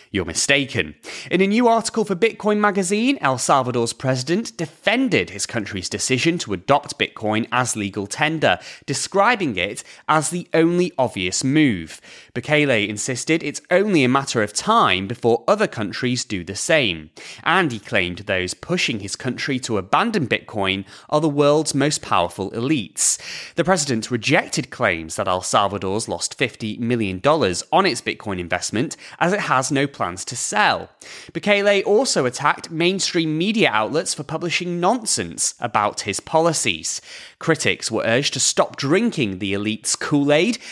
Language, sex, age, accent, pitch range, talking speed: English, male, 30-49, British, 110-170 Hz, 150 wpm